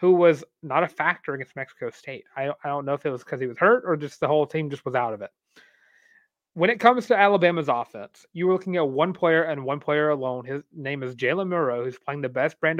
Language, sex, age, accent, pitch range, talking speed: English, male, 30-49, American, 140-175 Hz, 260 wpm